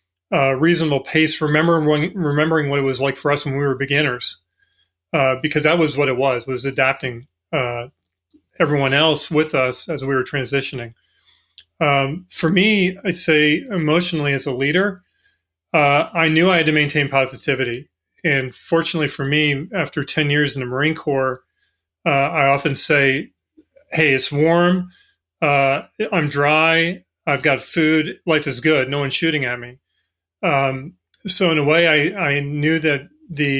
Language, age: English, 30-49